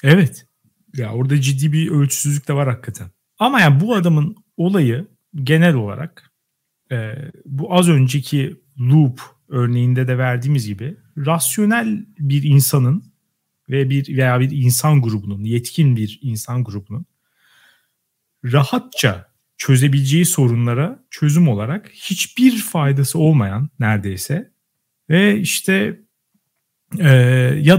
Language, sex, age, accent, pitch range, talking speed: Turkish, male, 40-59, native, 125-170 Hz, 110 wpm